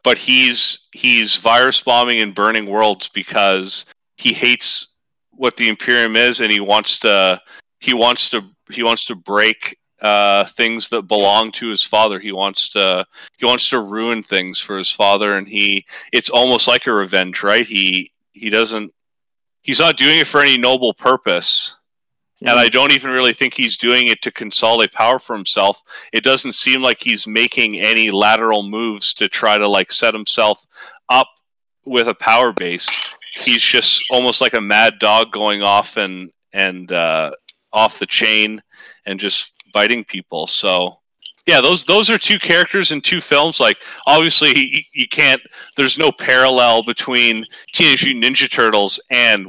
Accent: American